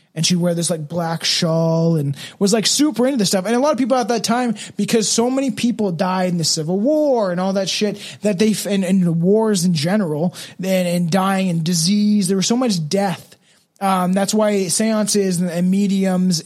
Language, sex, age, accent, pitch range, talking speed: English, male, 20-39, American, 170-200 Hz, 215 wpm